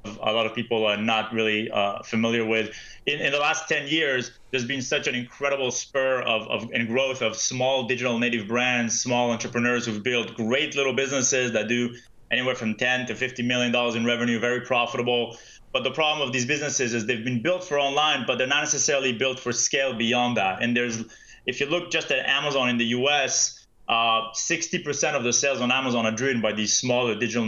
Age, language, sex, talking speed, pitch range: 20-39, English, male, 210 wpm, 120-140 Hz